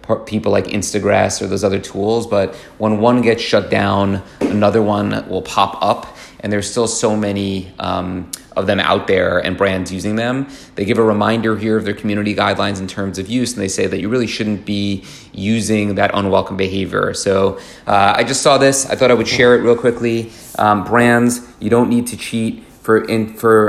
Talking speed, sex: 205 wpm, male